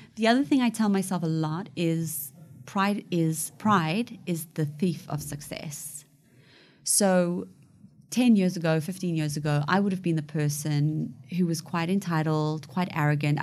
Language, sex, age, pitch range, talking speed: English, female, 30-49, 150-190 Hz, 160 wpm